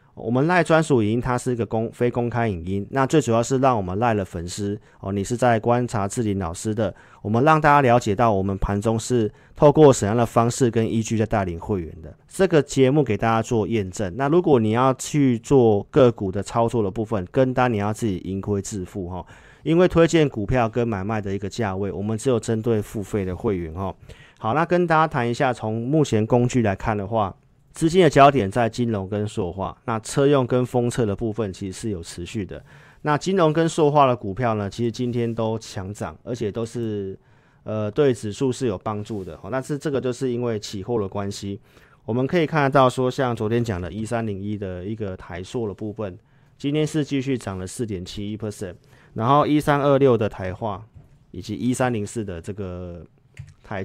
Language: Chinese